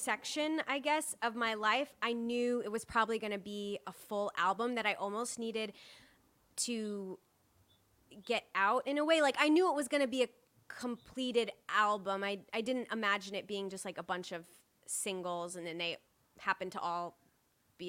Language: English